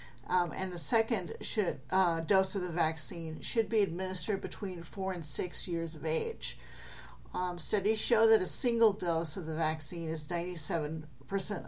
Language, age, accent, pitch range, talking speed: English, 40-59, American, 160-200 Hz, 165 wpm